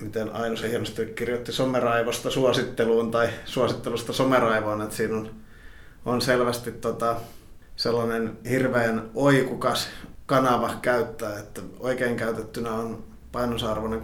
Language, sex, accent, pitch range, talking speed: Finnish, male, native, 110-120 Hz, 110 wpm